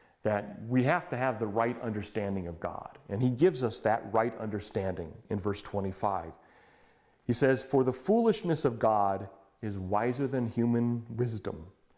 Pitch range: 105-150 Hz